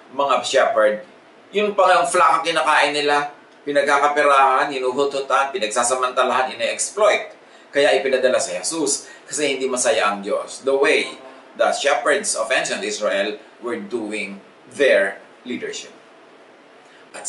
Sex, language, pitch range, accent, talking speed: male, English, 130-185 Hz, Filipino, 115 wpm